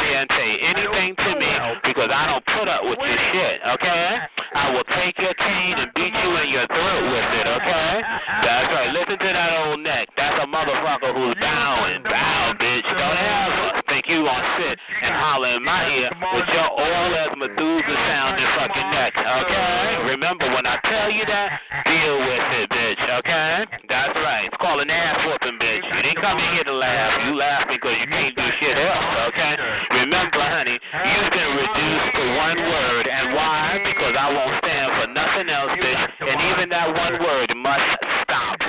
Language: English